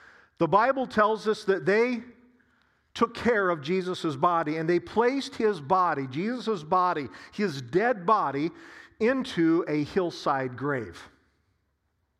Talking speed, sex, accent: 125 wpm, male, American